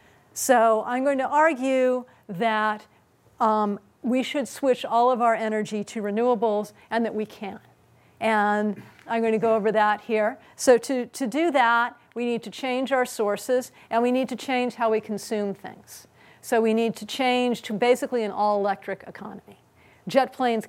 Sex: female